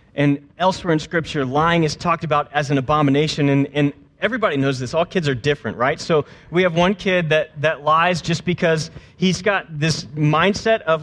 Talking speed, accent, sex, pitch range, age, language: 195 wpm, American, male, 140-180 Hz, 30-49, English